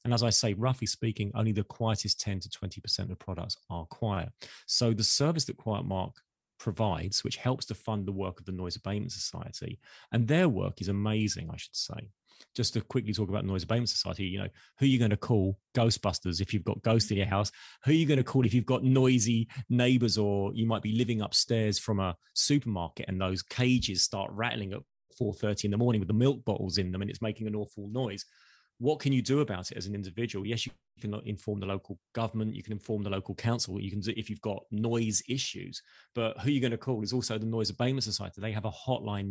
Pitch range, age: 100-125 Hz, 30-49